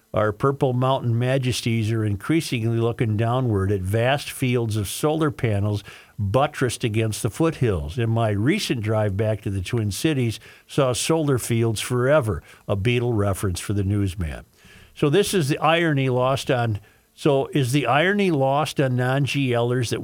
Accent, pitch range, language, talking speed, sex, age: American, 110-140 Hz, English, 155 wpm, male, 50-69